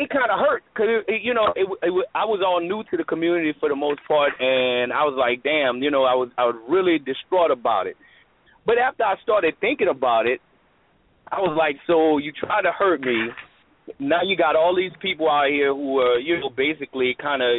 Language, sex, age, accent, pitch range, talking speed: English, male, 30-49, American, 135-190 Hz, 230 wpm